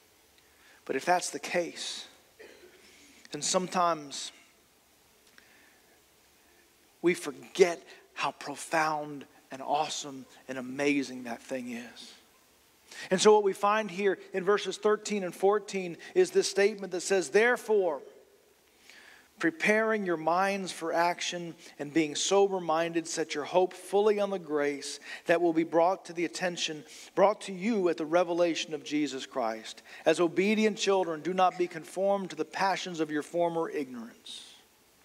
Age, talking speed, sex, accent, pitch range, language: 40-59, 135 wpm, male, American, 165-215 Hz, English